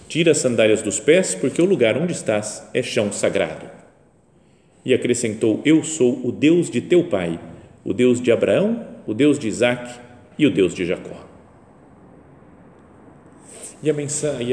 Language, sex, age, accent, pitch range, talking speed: Portuguese, male, 40-59, Brazilian, 105-135 Hz, 150 wpm